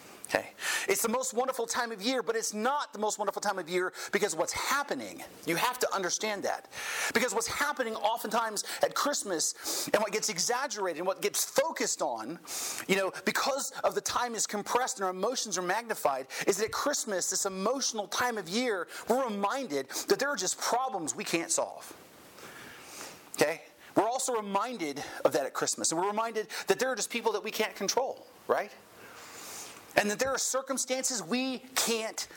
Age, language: 30-49, English